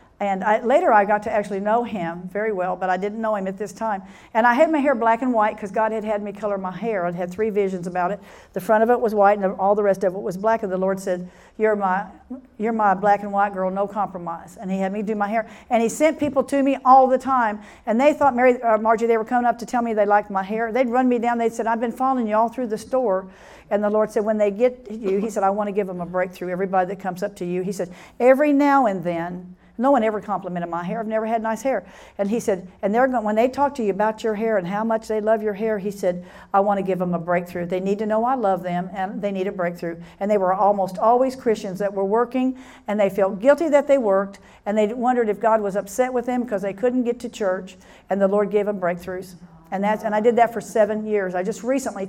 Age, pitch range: 50-69, 195-235 Hz